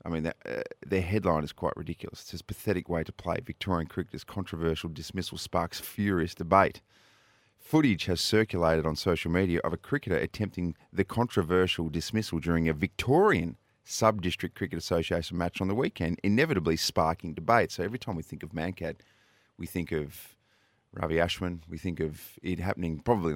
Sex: male